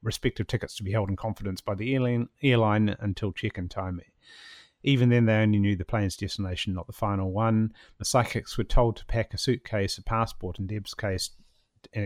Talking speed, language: 200 wpm, English